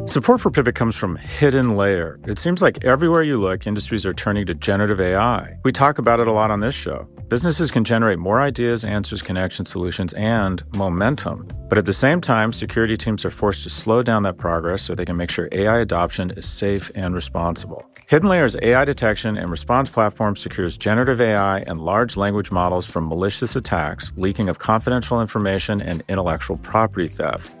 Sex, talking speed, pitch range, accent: male, 190 wpm, 95-115 Hz, American